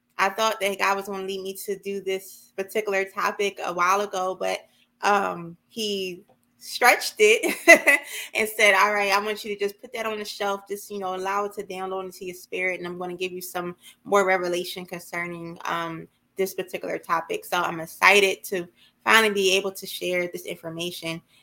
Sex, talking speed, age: female, 200 wpm, 20-39